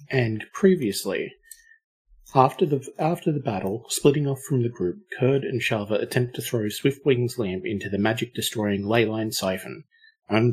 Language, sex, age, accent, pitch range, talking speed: English, male, 30-49, Australian, 105-145 Hz, 155 wpm